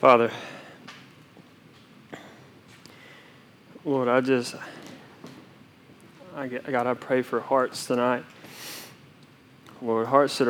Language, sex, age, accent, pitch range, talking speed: English, male, 20-39, American, 115-130 Hz, 85 wpm